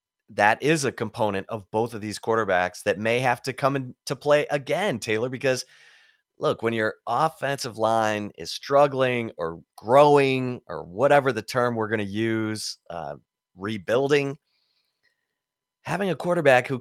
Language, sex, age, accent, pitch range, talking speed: English, male, 30-49, American, 105-140 Hz, 150 wpm